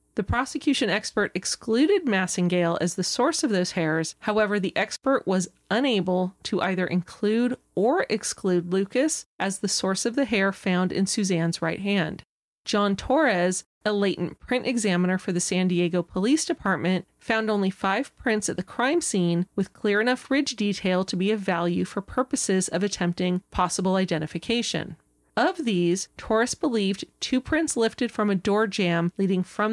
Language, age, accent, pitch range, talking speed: English, 30-49, American, 185-235 Hz, 165 wpm